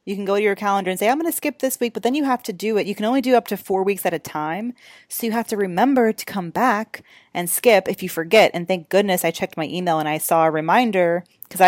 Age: 30-49